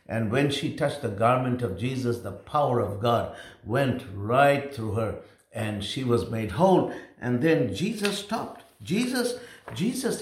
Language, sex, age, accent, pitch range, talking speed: English, male, 60-79, Indian, 110-155 Hz, 160 wpm